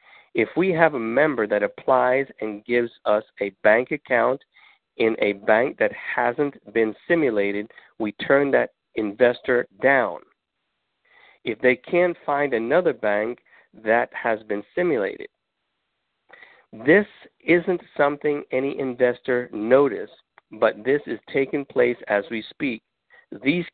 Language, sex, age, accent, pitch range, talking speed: English, male, 50-69, American, 110-140 Hz, 125 wpm